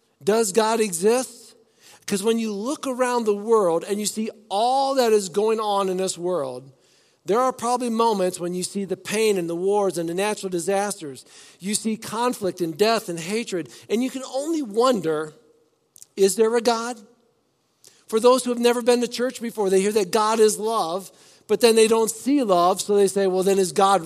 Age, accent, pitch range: 50-69, American, 170-220 Hz